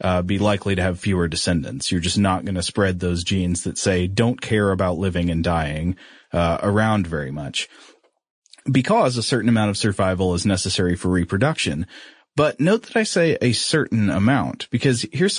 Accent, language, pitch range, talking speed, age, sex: American, English, 95-120 Hz, 185 wpm, 30-49, male